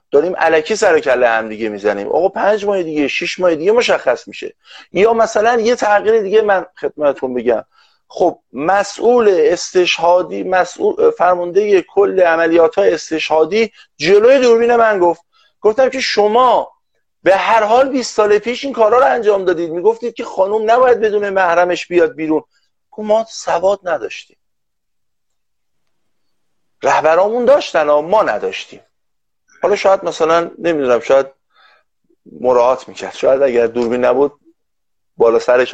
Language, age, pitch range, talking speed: Persian, 50-69, 155-250 Hz, 135 wpm